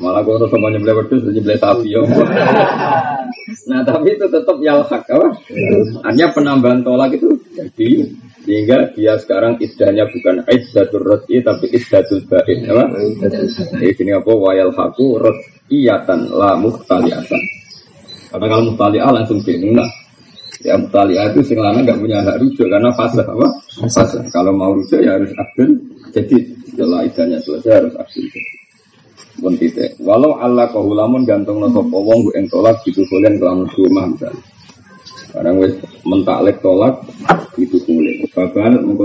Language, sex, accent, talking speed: Indonesian, male, native, 85 wpm